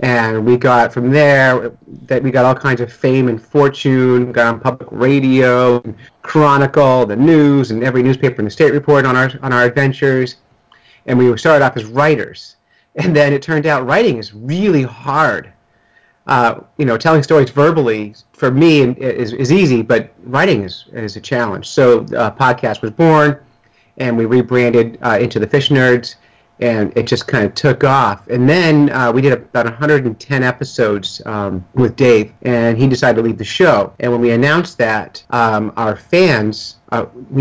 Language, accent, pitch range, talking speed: English, American, 115-140 Hz, 180 wpm